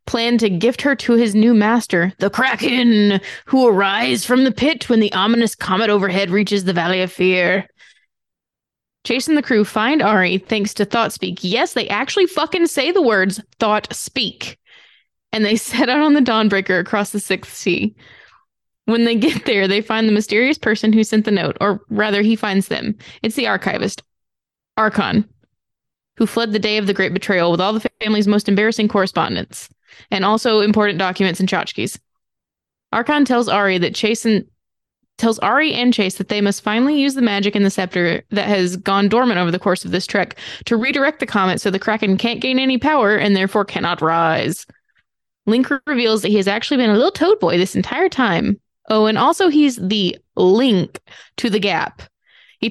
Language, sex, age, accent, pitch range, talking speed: English, female, 20-39, American, 195-235 Hz, 190 wpm